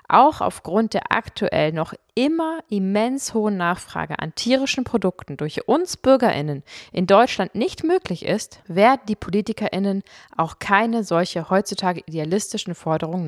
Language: German